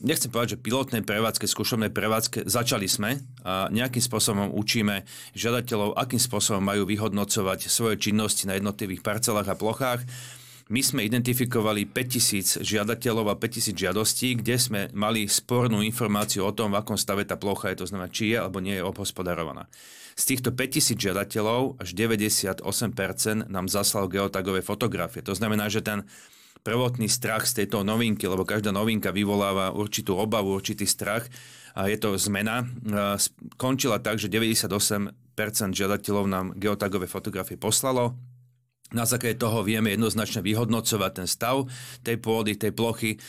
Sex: male